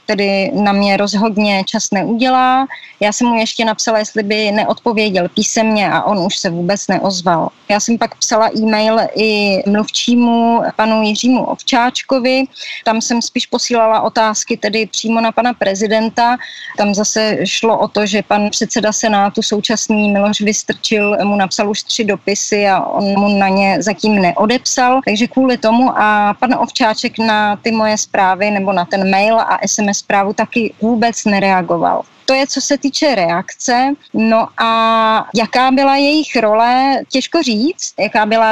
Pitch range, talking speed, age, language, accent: 210-245 Hz, 155 wpm, 20-39, Czech, native